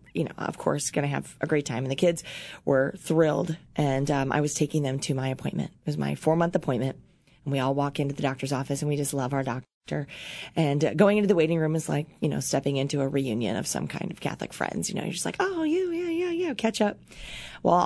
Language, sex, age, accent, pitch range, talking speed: English, female, 30-49, American, 140-185 Hz, 255 wpm